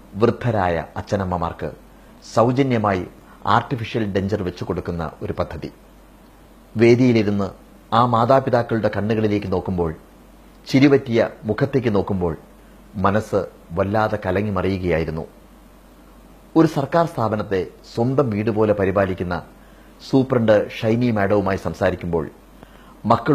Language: Malayalam